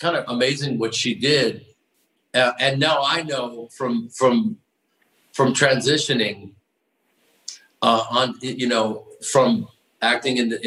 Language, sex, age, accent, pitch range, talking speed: English, male, 50-69, American, 115-135 Hz, 120 wpm